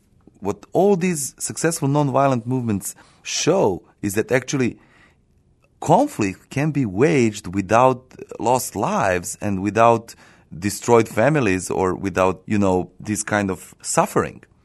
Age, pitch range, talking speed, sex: 30-49, 100-145 Hz, 120 wpm, male